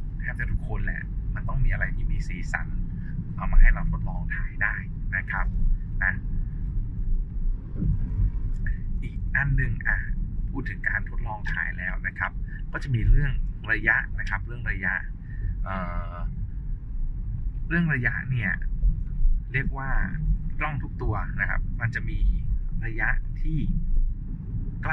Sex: male